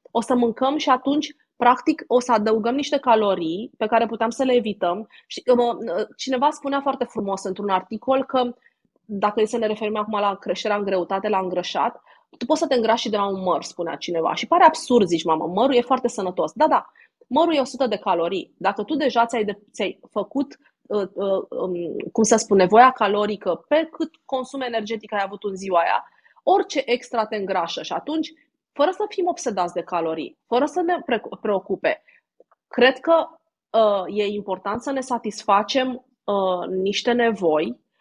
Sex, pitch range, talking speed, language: female, 205-275 Hz, 175 wpm, Romanian